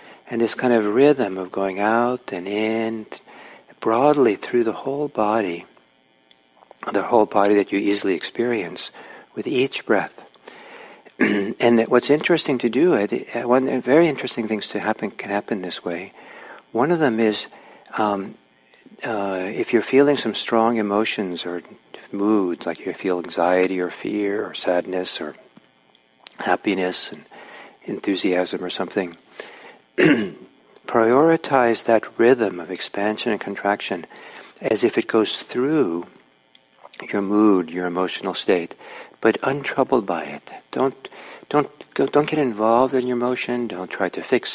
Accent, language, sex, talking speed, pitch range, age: American, English, male, 140 wpm, 95-120 Hz, 60-79